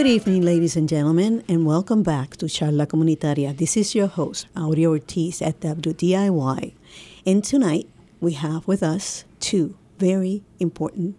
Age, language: 50-69, English